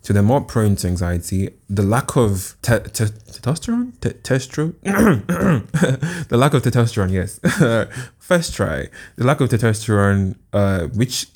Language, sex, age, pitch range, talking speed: English, male, 20-39, 95-115 Hz, 125 wpm